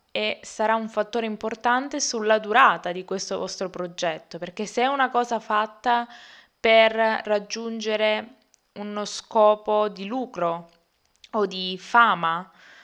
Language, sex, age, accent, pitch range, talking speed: Italian, female, 20-39, native, 195-235 Hz, 120 wpm